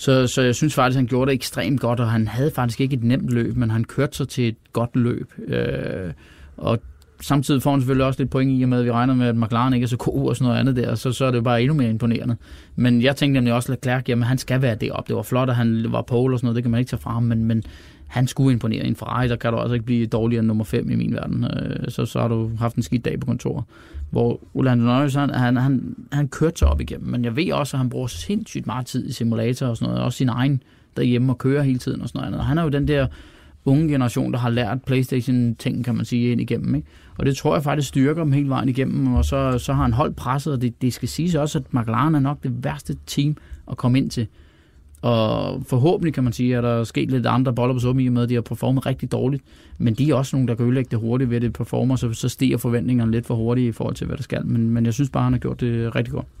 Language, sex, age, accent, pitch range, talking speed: Danish, male, 20-39, native, 115-135 Hz, 280 wpm